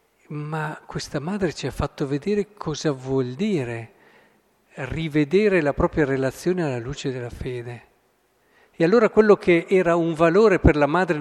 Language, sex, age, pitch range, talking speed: Italian, male, 50-69, 135-185 Hz, 150 wpm